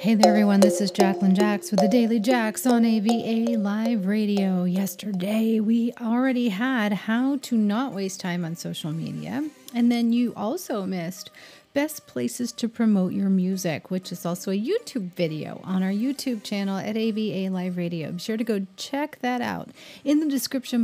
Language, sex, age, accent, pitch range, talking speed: English, female, 40-59, American, 185-235 Hz, 180 wpm